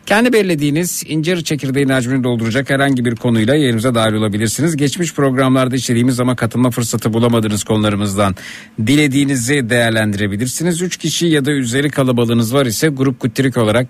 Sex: male